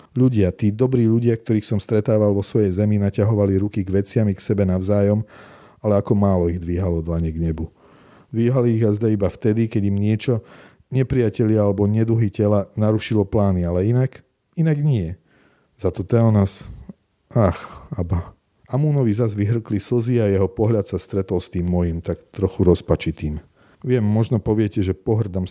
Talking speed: 160 wpm